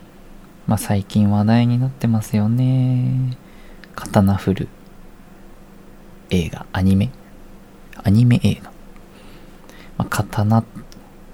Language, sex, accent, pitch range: Japanese, male, native, 105-130 Hz